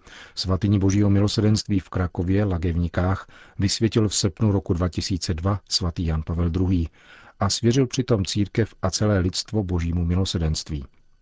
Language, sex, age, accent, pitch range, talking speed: Czech, male, 40-59, native, 85-100 Hz, 130 wpm